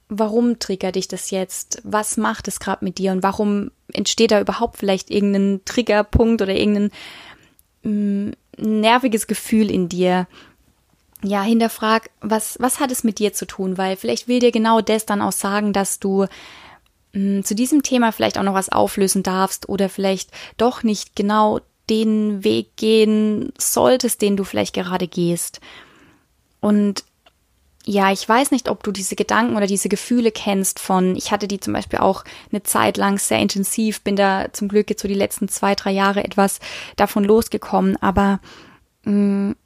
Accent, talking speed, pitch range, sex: German, 170 wpm, 195-220 Hz, female